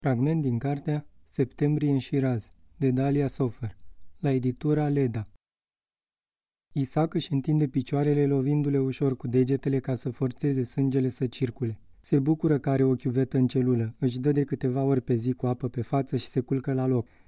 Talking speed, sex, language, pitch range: 170 wpm, male, Romanian, 125-140 Hz